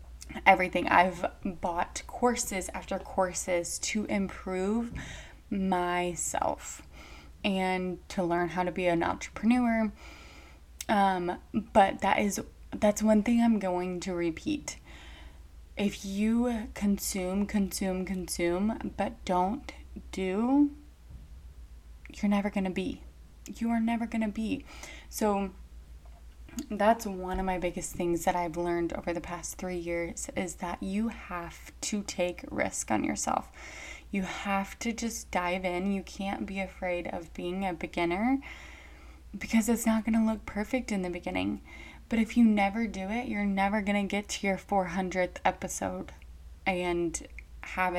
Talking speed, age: 140 wpm, 20-39